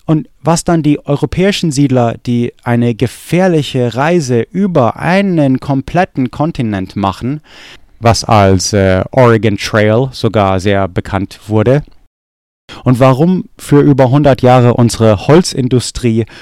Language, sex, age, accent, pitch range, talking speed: English, male, 30-49, German, 110-140 Hz, 115 wpm